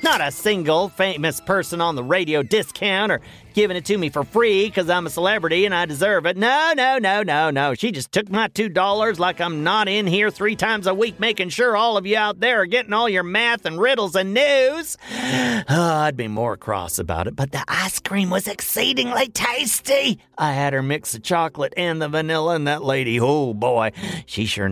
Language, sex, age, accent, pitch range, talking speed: English, male, 40-59, American, 140-220 Hz, 215 wpm